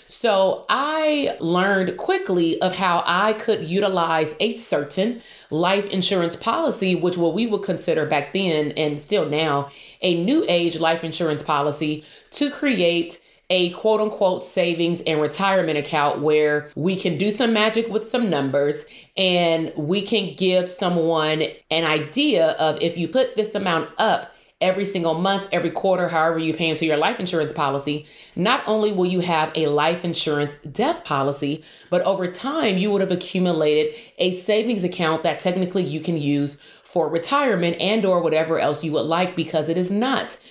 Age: 30-49